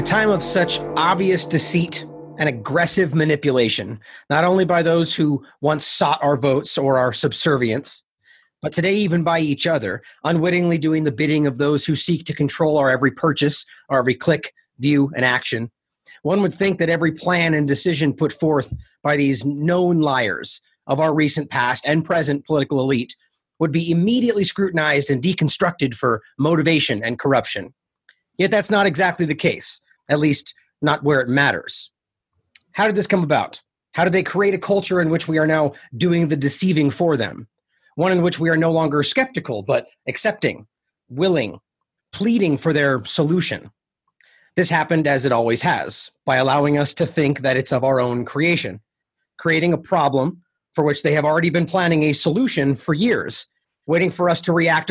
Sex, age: male, 30-49